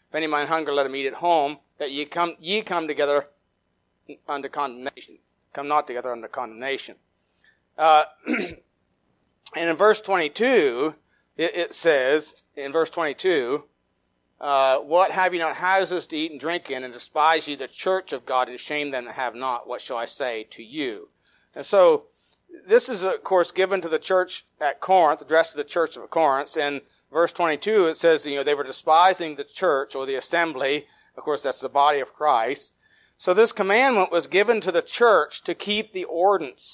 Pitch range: 140-185 Hz